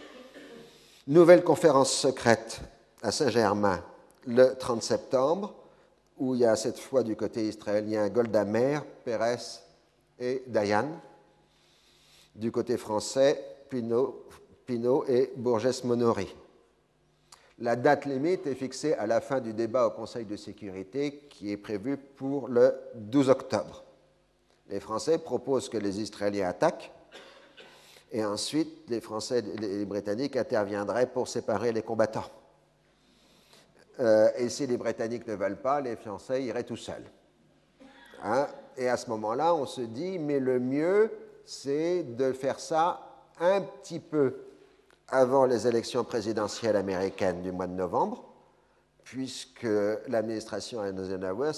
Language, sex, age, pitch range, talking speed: French, male, 50-69, 105-135 Hz, 130 wpm